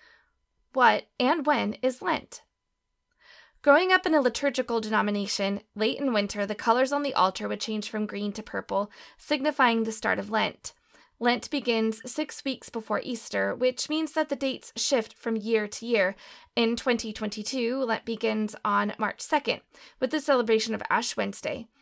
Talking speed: 160 wpm